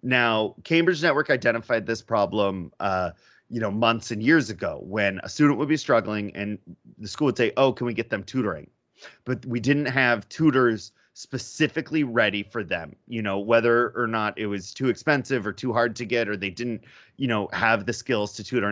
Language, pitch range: English, 100-130 Hz